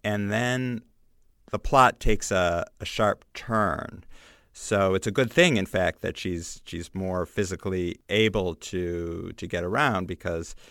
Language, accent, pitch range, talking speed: English, American, 90-110 Hz, 150 wpm